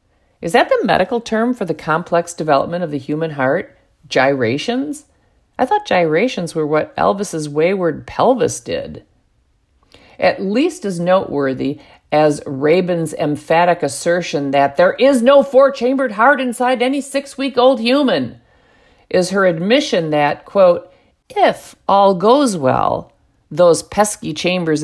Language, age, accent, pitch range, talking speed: English, 50-69, American, 150-200 Hz, 130 wpm